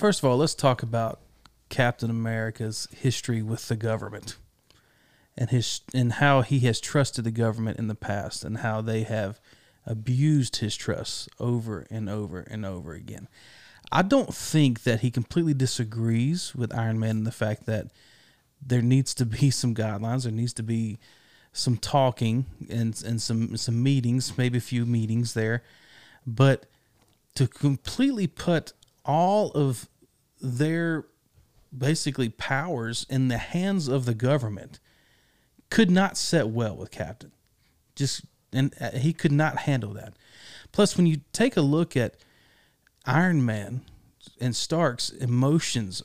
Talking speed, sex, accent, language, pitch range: 145 wpm, male, American, English, 110-140 Hz